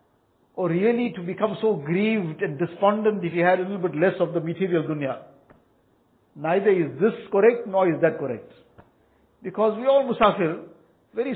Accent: Indian